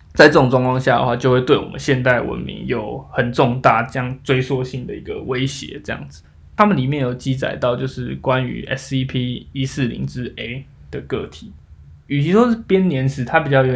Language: Chinese